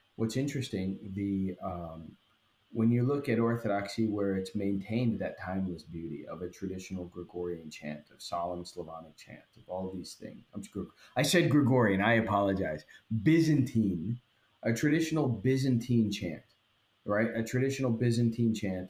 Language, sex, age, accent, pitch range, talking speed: English, male, 30-49, American, 100-125 Hz, 145 wpm